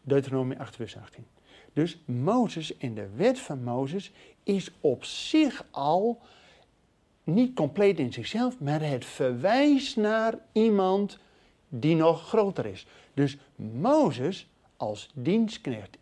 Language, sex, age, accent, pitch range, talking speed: Dutch, male, 50-69, Dutch, 135-205 Hz, 120 wpm